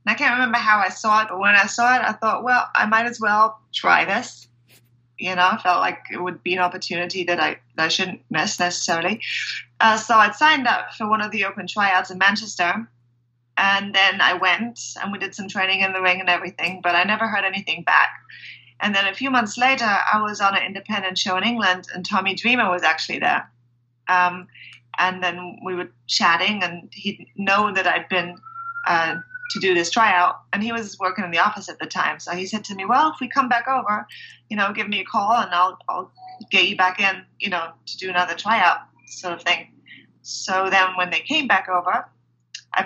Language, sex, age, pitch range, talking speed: English, female, 20-39, 180-220 Hz, 225 wpm